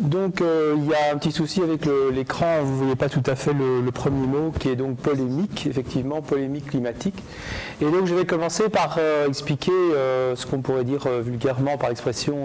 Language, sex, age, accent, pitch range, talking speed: French, male, 40-59, French, 130-155 Hz, 220 wpm